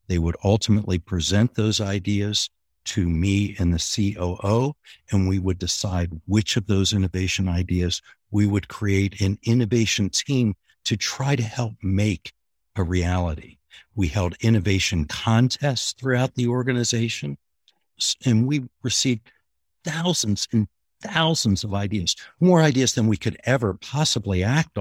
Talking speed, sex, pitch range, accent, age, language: 135 wpm, male, 95-140 Hz, American, 60-79, English